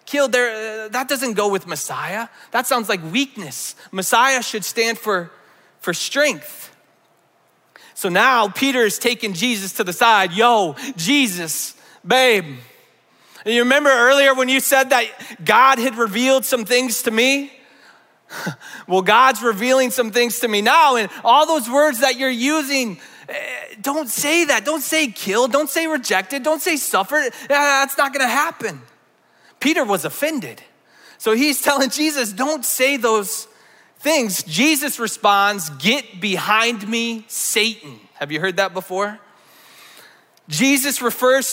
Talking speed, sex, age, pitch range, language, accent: 145 wpm, male, 30-49, 215-275 Hz, English, American